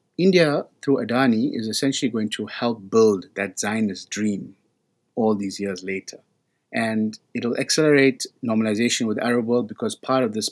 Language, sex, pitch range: English, male, 105-145 Hz